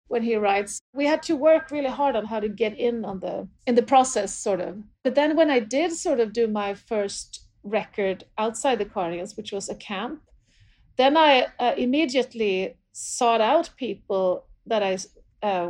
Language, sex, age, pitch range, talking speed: English, female, 40-59, 195-240 Hz, 185 wpm